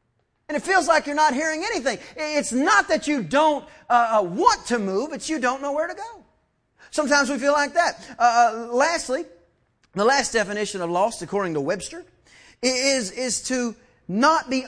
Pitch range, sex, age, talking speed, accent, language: 165-250 Hz, male, 30-49, 180 wpm, American, English